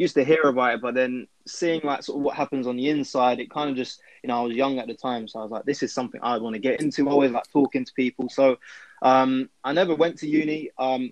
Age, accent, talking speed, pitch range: 20-39, British, 285 wpm, 125-140 Hz